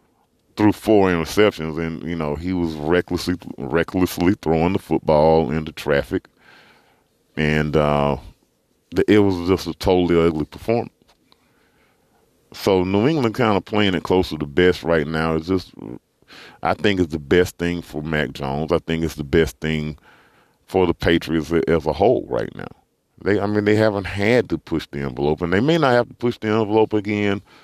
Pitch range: 80-95 Hz